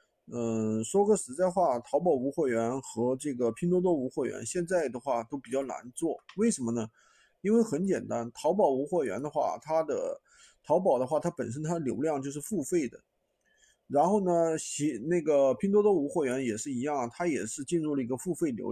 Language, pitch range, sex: Chinese, 125-180 Hz, male